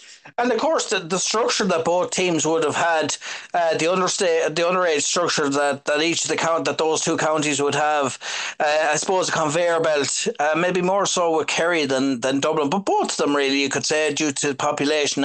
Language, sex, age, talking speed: English, male, 30-49, 225 wpm